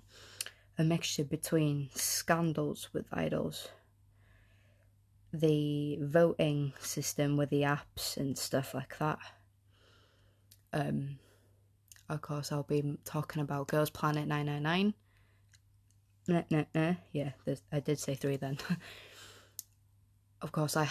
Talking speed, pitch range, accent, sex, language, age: 105 wpm, 100-155 Hz, British, female, English, 20-39